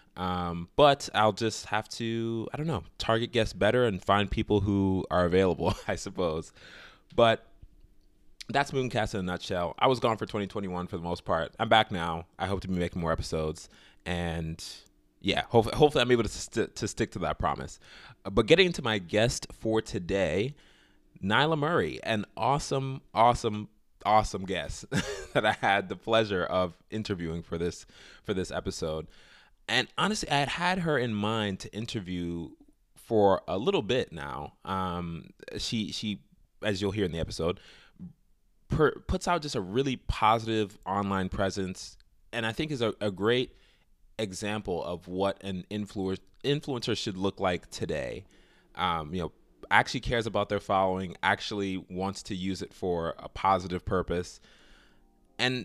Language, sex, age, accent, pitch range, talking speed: English, male, 20-39, American, 90-115 Hz, 160 wpm